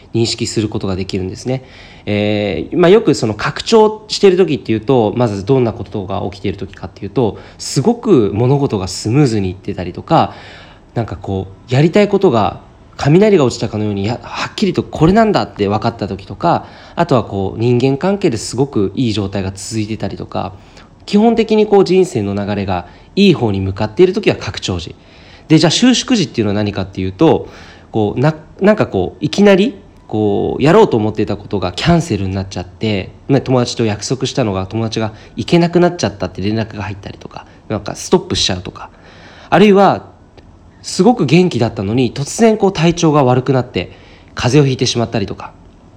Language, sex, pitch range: Japanese, male, 100-150 Hz